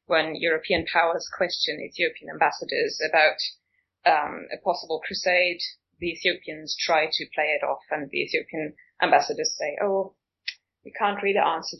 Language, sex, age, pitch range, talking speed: English, female, 30-49, 180-255 Hz, 145 wpm